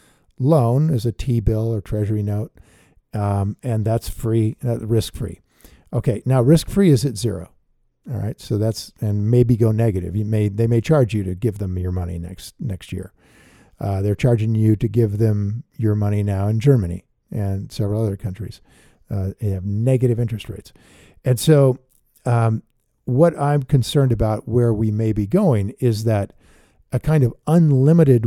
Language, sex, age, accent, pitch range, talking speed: English, male, 50-69, American, 105-135 Hz, 170 wpm